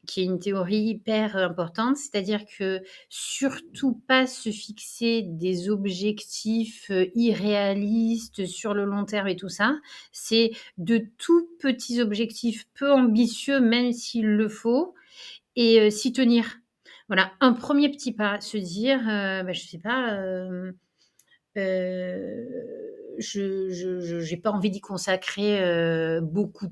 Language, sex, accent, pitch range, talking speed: French, female, French, 185-230 Hz, 135 wpm